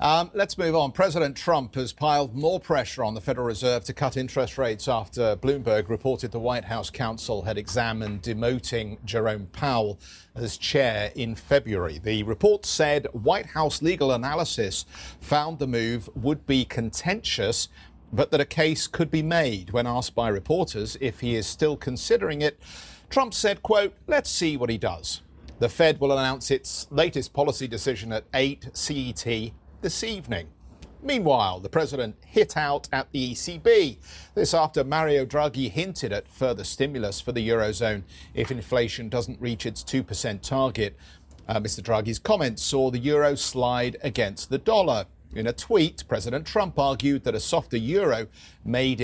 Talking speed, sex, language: 165 wpm, male, English